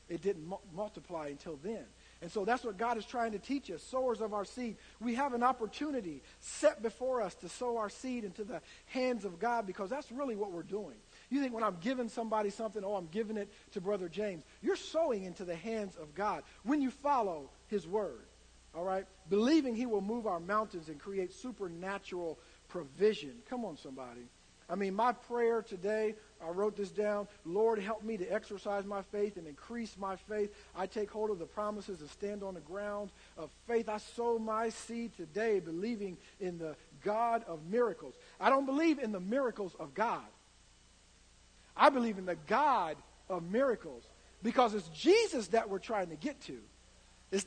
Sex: male